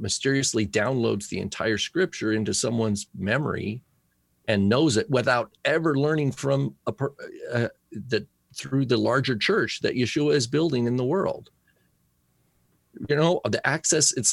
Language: English